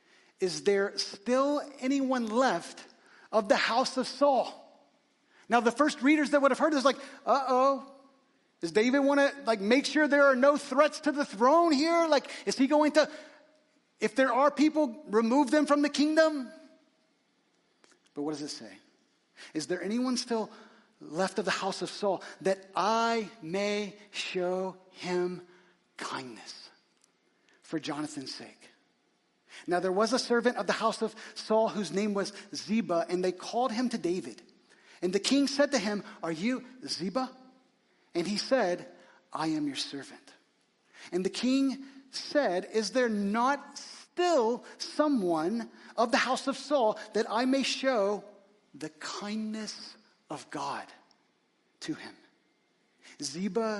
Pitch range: 200-280 Hz